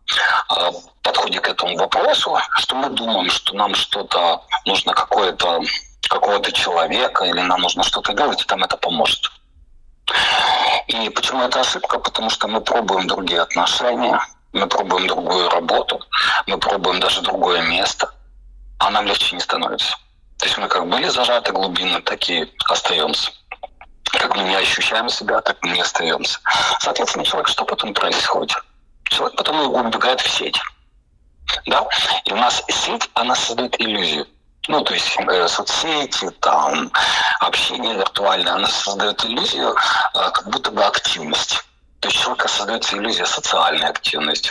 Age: 40-59